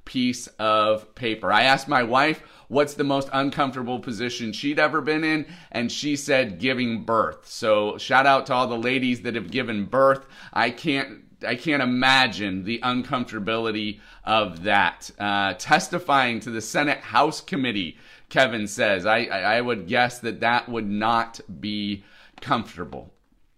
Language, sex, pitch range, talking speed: English, male, 115-155 Hz, 155 wpm